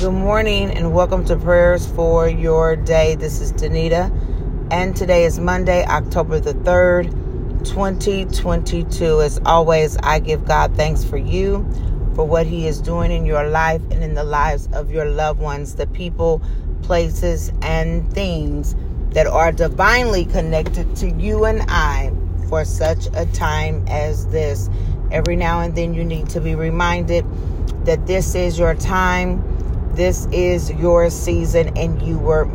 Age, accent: 40-59, American